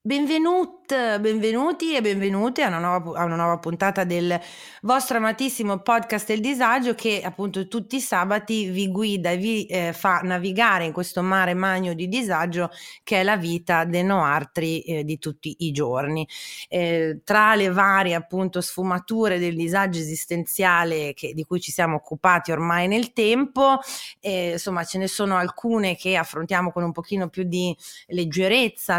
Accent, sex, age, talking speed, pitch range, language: native, female, 30-49, 160 wpm, 175-225 Hz, Italian